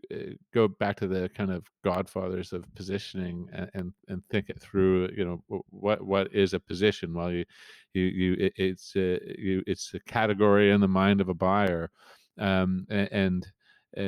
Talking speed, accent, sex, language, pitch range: 170 wpm, American, male, English, 95-115 Hz